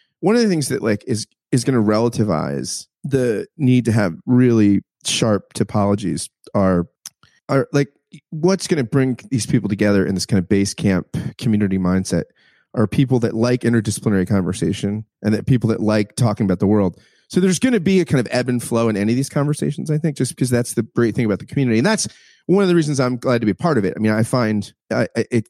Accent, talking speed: American, 230 wpm